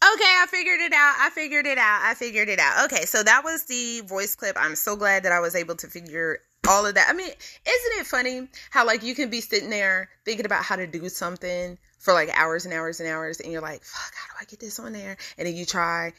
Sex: female